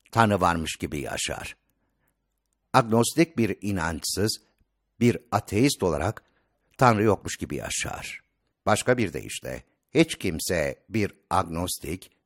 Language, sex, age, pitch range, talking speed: Turkish, male, 60-79, 90-125 Hz, 105 wpm